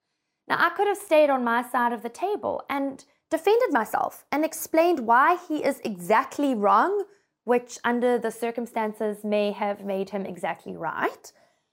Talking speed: 160 wpm